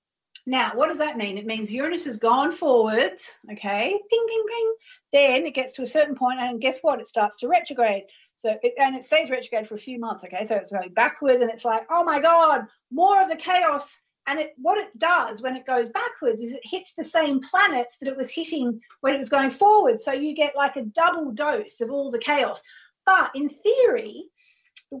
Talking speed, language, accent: 225 wpm, English, Australian